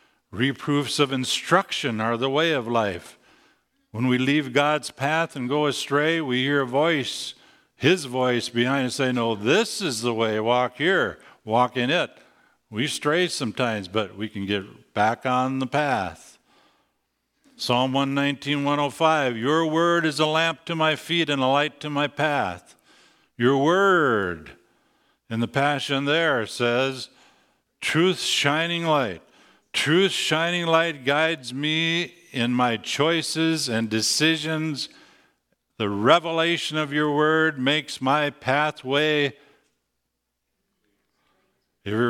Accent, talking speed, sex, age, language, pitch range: American, 130 wpm, male, 50-69, English, 120-150 Hz